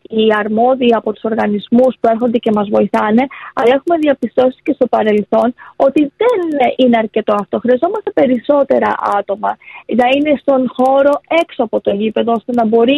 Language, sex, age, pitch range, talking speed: Greek, female, 20-39, 230-285 Hz, 155 wpm